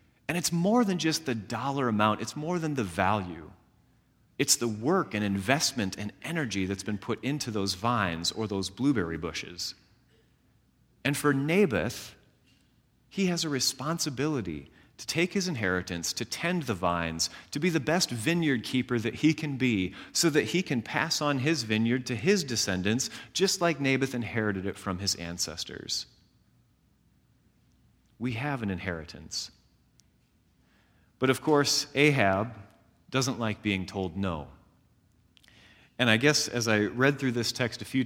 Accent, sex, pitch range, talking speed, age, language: American, male, 100-150 Hz, 155 wpm, 30-49, English